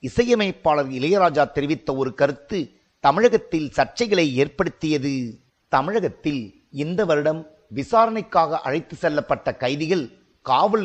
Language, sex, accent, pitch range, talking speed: Tamil, male, native, 145-205 Hz, 85 wpm